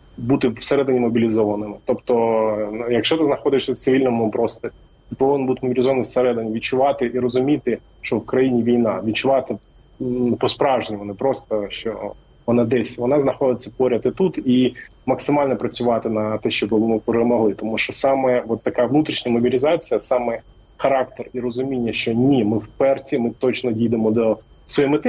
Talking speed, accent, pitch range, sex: 150 wpm, native, 110-130 Hz, male